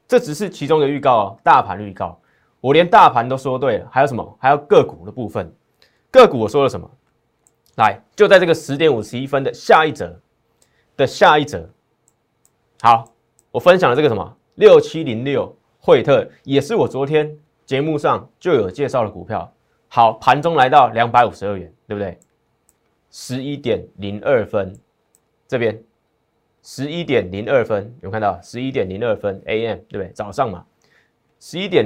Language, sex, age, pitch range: Chinese, male, 20-39, 110-155 Hz